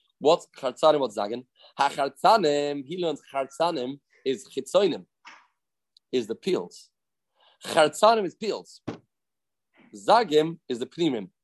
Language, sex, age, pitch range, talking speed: English, male, 30-49, 120-165 Hz, 100 wpm